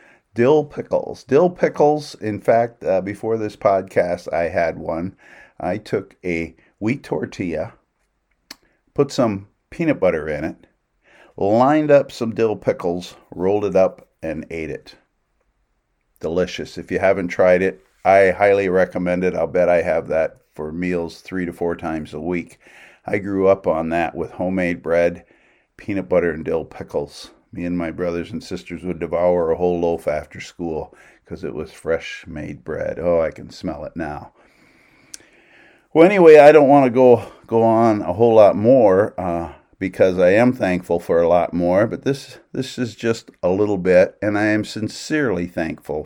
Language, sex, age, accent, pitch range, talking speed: English, male, 50-69, American, 85-115 Hz, 170 wpm